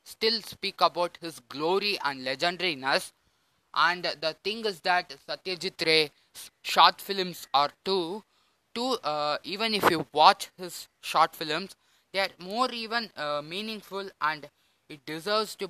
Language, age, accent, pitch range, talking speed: Tamil, 20-39, native, 145-190 Hz, 140 wpm